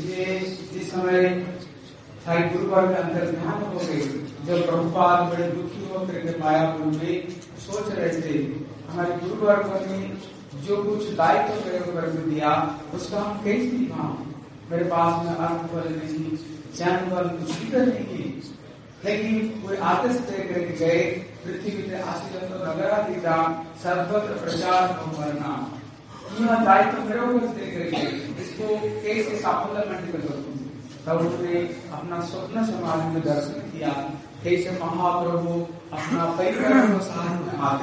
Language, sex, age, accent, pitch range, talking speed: Hindi, male, 40-59, native, 165-205 Hz, 50 wpm